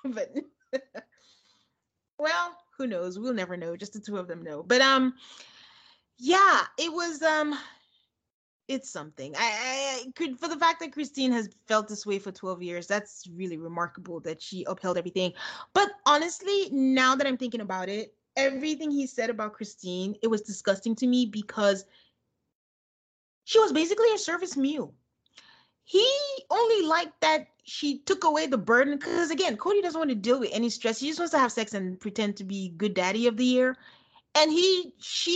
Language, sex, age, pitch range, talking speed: English, female, 30-49, 210-295 Hz, 180 wpm